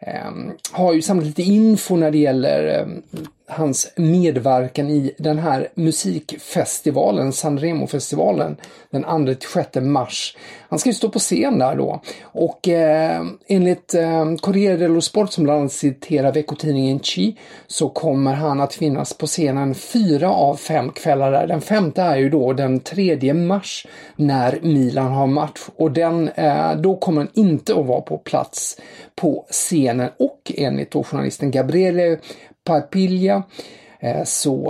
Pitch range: 140-185 Hz